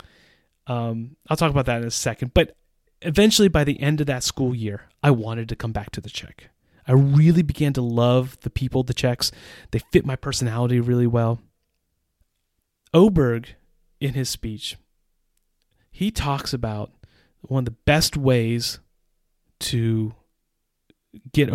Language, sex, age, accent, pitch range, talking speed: English, male, 30-49, American, 110-140 Hz, 150 wpm